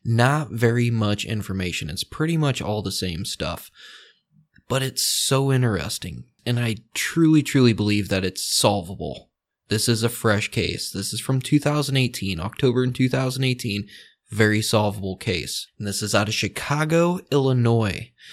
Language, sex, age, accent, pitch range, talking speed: English, male, 20-39, American, 105-130 Hz, 145 wpm